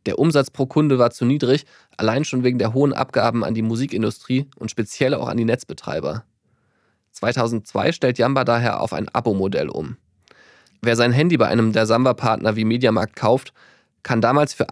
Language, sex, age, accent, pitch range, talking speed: German, male, 20-39, German, 110-130 Hz, 175 wpm